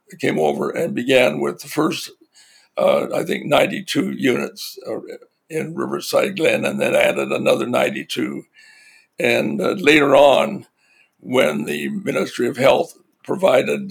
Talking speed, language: 135 wpm, English